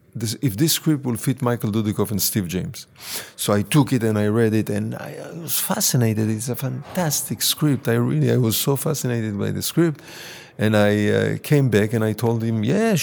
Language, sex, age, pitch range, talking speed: Swedish, male, 50-69, 115-155 Hz, 205 wpm